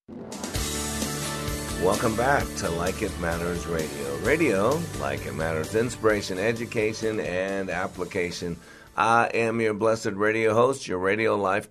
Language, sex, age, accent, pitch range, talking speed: English, male, 50-69, American, 80-110 Hz, 125 wpm